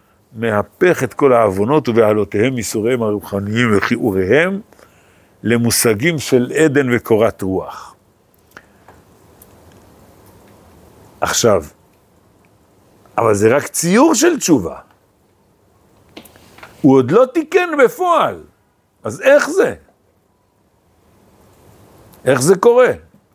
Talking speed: 80 wpm